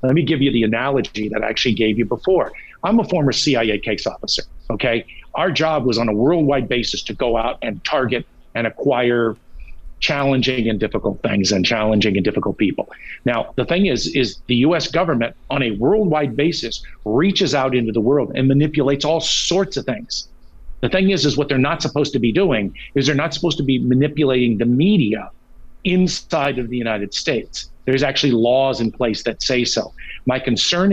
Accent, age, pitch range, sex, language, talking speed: American, 50-69, 115-165 Hz, male, English, 195 wpm